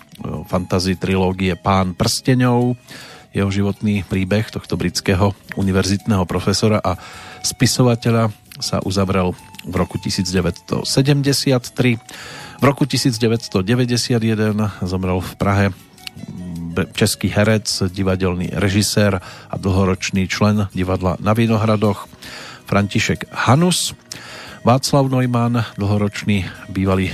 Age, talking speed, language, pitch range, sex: 40-59, 90 wpm, Slovak, 95-115 Hz, male